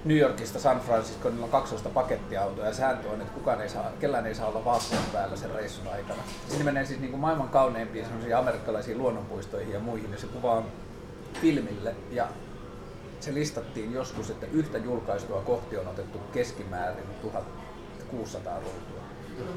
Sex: male